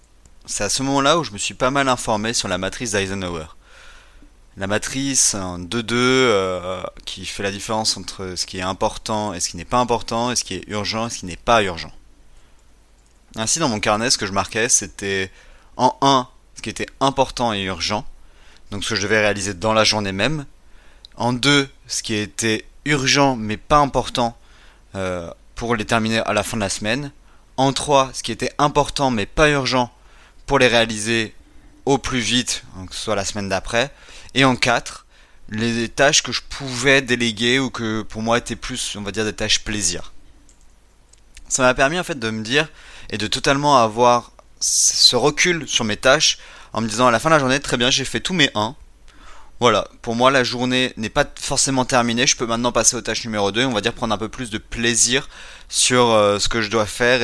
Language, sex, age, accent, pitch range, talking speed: French, male, 30-49, French, 100-125 Hz, 210 wpm